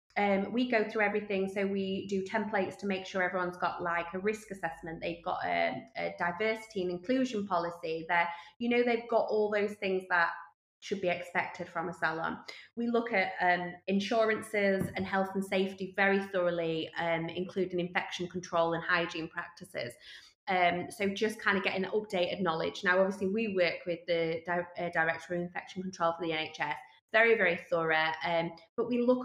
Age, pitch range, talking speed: 20-39, 175-205 Hz, 185 wpm